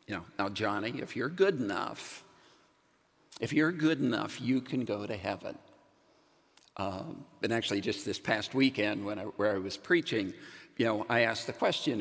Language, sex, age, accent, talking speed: English, male, 50-69, American, 180 wpm